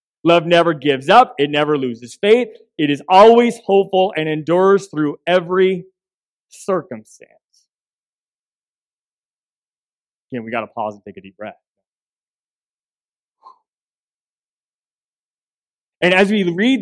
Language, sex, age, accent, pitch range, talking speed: English, male, 30-49, American, 140-185 Hz, 115 wpm